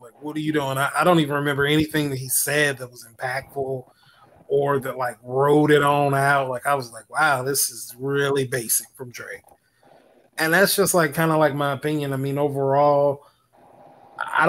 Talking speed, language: 195 wpm, English